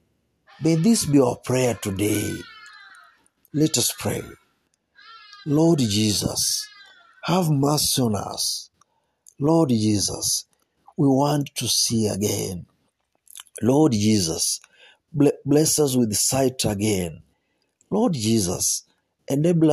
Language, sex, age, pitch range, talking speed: Swahili, male, 50-69, 110-145 Hz, 95 wpm